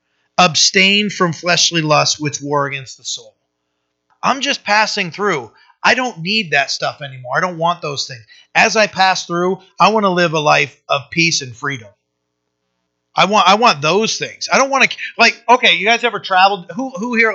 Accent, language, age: American, English, 30-49